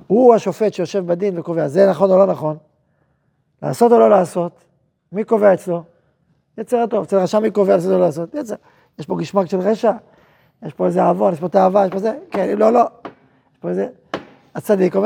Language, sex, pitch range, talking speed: Hebrew, male, 170-220 Hz, 190 wpm